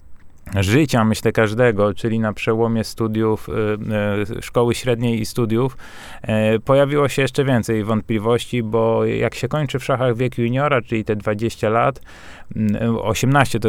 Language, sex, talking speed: Polish, male, 130 wpm